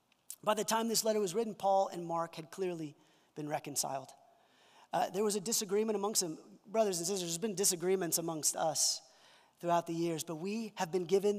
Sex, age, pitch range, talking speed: male, 30-49, 165-205 Hz, 195 wpm